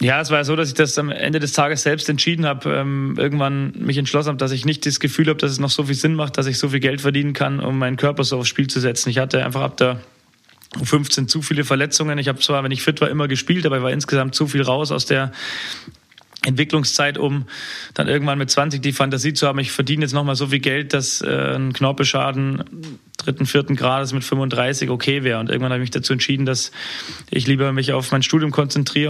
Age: 20-39